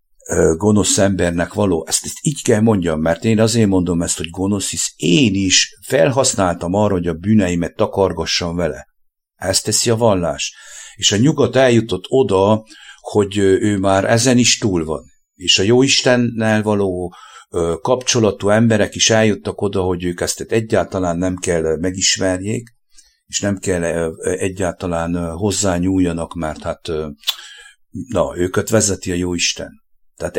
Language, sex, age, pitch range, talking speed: English, male, 60-79, 90-110 Hz, 140 wpm